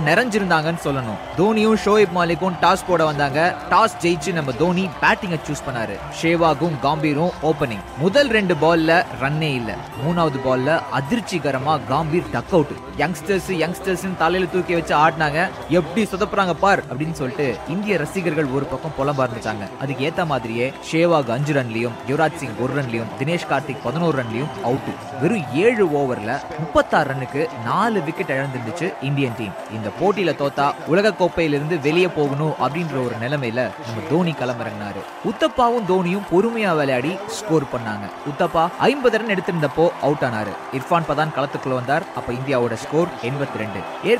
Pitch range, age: 130-175 Hz, 20-39